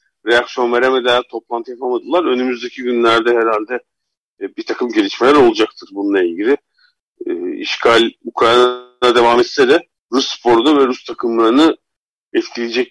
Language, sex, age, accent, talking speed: Turkish, male, 50-69, native, 110 wpm